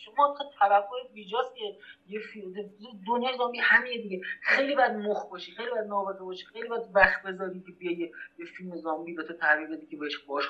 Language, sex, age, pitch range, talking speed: Persian, male, 30-49, 165-235 Hz, 175 wpm